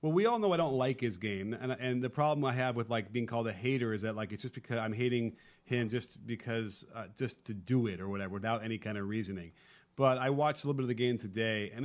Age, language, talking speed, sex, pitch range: 30-49, English, 280 wpm, male, 105-125 Hz